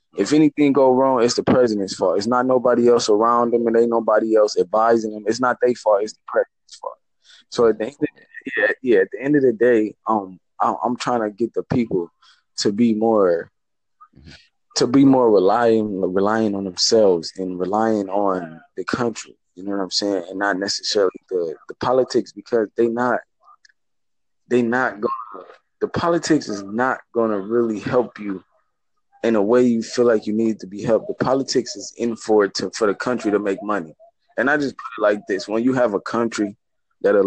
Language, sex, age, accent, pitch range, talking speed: English, male, 20-39, American, 105-125 Hz, 205 wpm